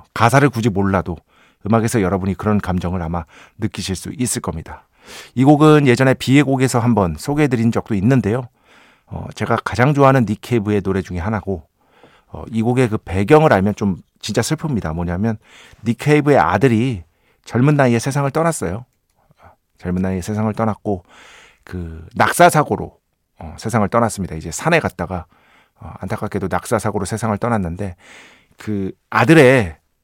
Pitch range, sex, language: 95-125 Hz, male, Korean